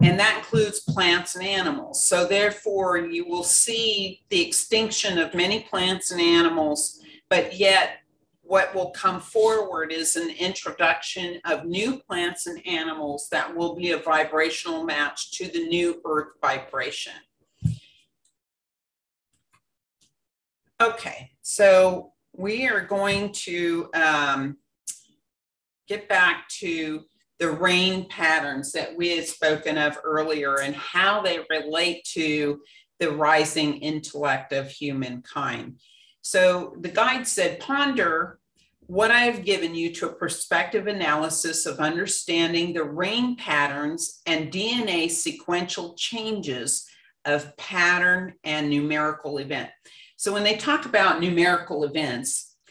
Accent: American